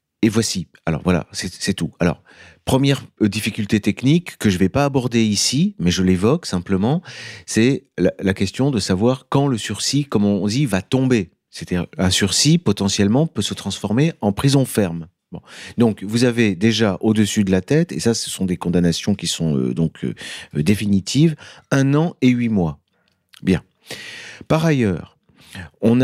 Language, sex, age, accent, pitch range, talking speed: French, male, 40-59, French, 95-130 Hz, 170 wpm